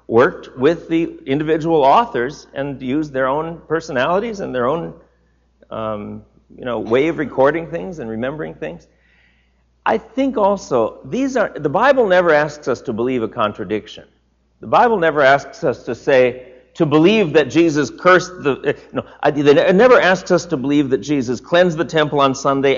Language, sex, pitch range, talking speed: English, male, 110-160 Hz, 170 wpm